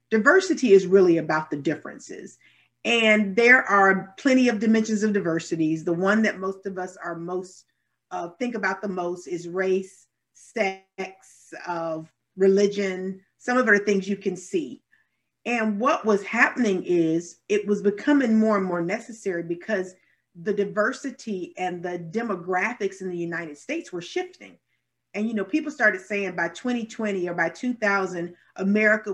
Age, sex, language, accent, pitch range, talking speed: 40-59, female, English, American, 175-215 Hz, 160 wpm